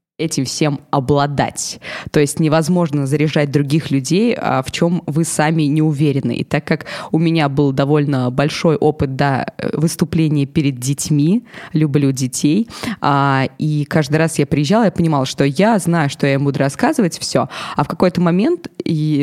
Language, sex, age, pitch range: Russian, female, 20-39, 145-175 Hz